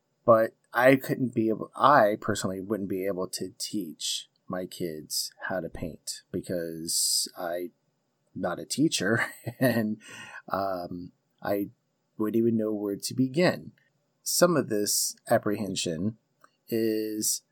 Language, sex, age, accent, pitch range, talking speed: English, male, 30-49, American, 95-120 Hz, 125 wpm